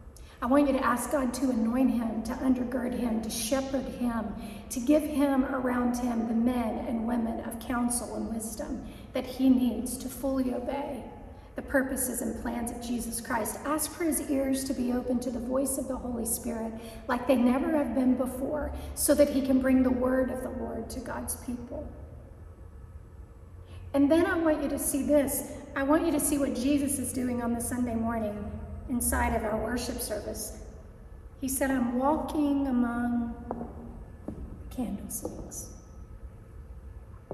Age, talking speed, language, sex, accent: 40-59, 170 wpm, English, female, American